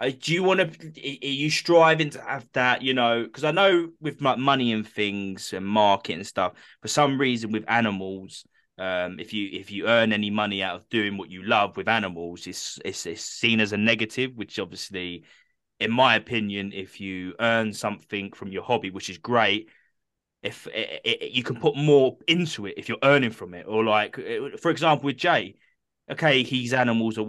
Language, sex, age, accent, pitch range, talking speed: English, male, 20-39, British, 105-140 Hz, 200 wpm